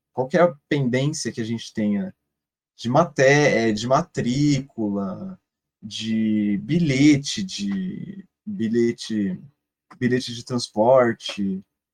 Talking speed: 80 wpm